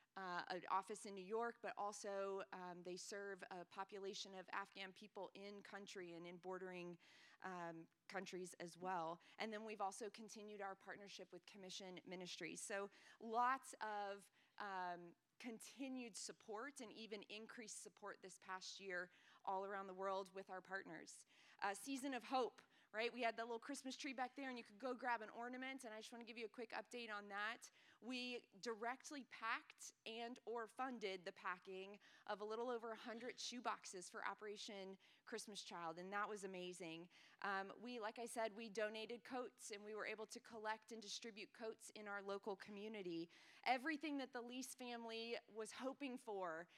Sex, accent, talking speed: female, American, 180 wpm